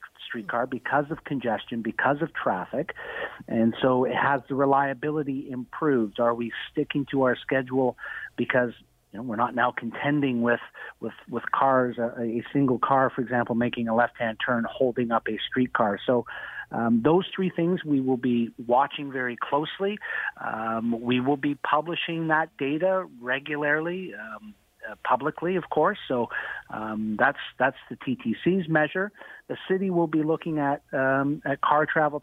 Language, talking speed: English, 160 wpm